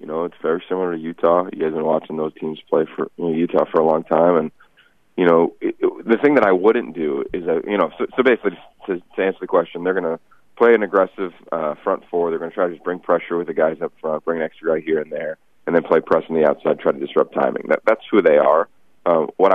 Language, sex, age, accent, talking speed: English, male, 30-49, American, 285 wpm